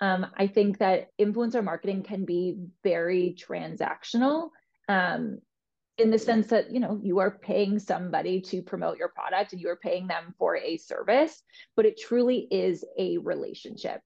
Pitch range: 185-240 Hz